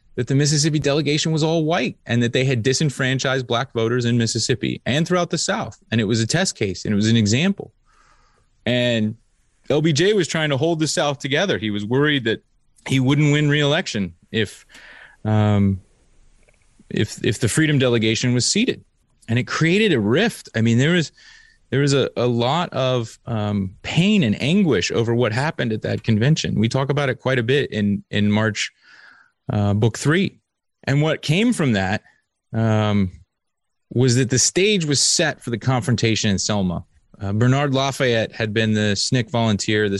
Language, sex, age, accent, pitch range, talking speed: English, male, 30-49, American, 105-140 Hz, 180 wpm